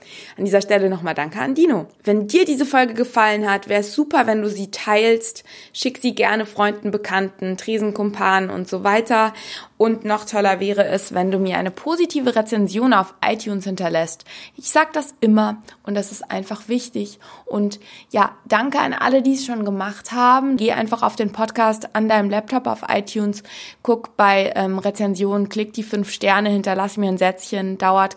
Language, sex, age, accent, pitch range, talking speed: German, female, 20-39, German, 190-230 Hz, 180 wpm